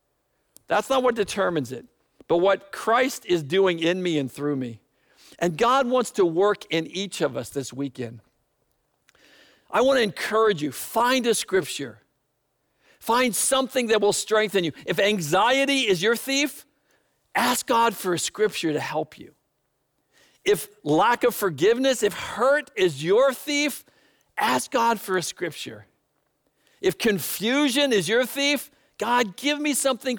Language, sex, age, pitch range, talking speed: English, male, 50-69, 175-245 Hz, 150 wpm